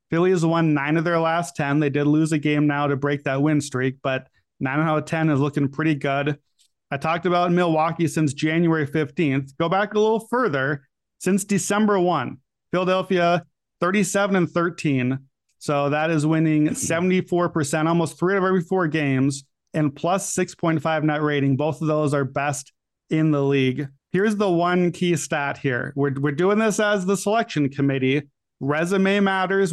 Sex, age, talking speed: male, 30-49, 180 wpm